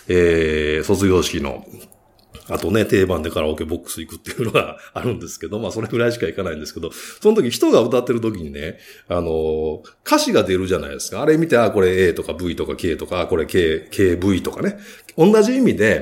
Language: Japanese